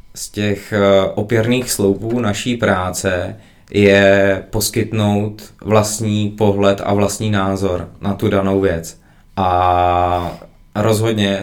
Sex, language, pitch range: male, Czech, 100-110 Hz